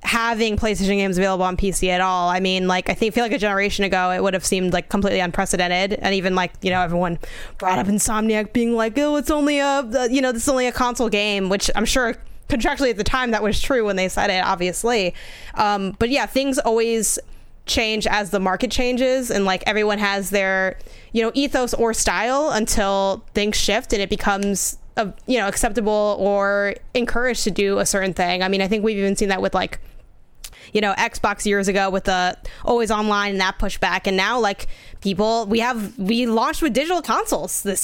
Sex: female